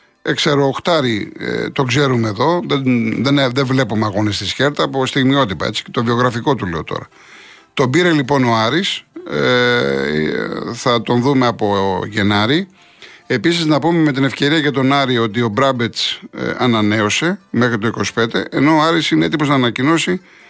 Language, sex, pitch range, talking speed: Greek, male, 115-150 Hz, 160 wpm